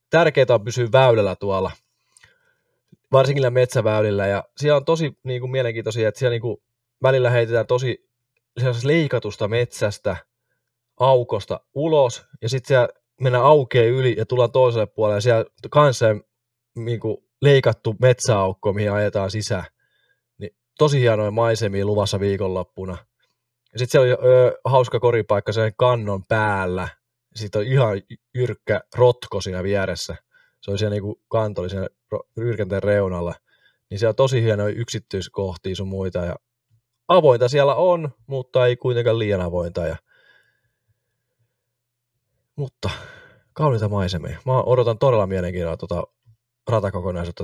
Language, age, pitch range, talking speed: Finnish, 20-39, 100-125 Hz, 125 wpm